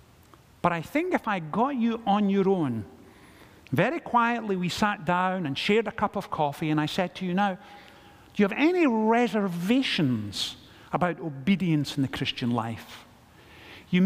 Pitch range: 165-245 Hz